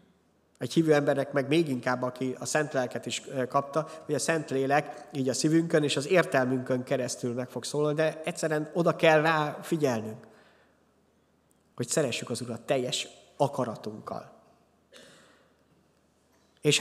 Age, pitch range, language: 20-39, 130-160 Hz, Hungarian